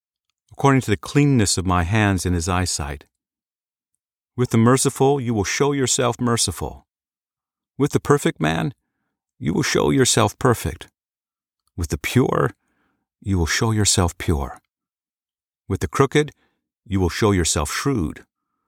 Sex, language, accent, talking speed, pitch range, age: male, English, American, 140 wpm, 90-125 Hz, 50-69